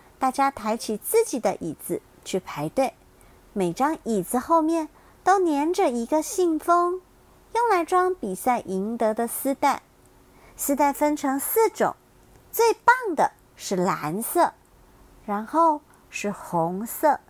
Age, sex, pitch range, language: 50-69, male, 205-315 Hz, Chinese